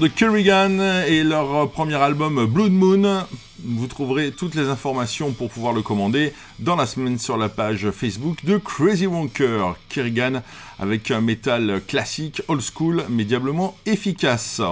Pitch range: 125-190 Hz